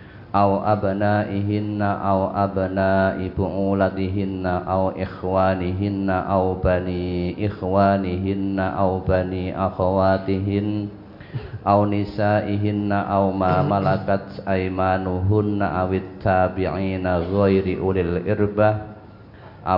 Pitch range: 95-105 Hz